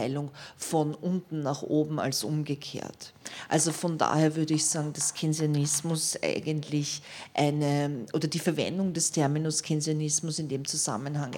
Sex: female